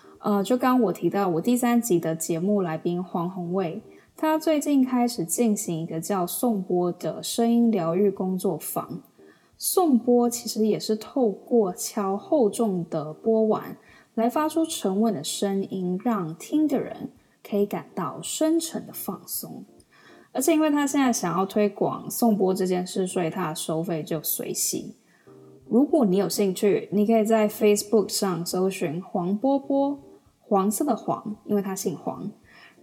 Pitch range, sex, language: 180-230 Hz, female, Chinese